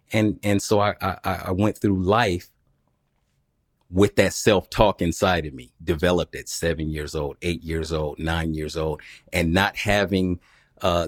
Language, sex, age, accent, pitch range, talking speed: English, male, 40-59, American, 85-100 Hz, 160 wpm